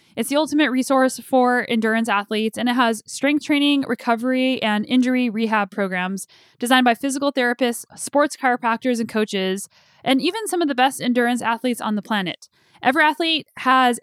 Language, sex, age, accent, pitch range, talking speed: English, female, 10-29, American, 225-285 Hz, 165 wpm